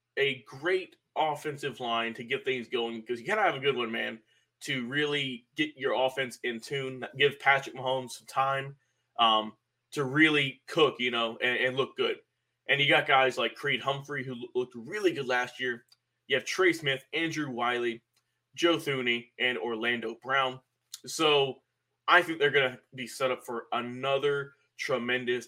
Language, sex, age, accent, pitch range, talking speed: English, male, 20-39, American, 125-165 Hz, 175 wpm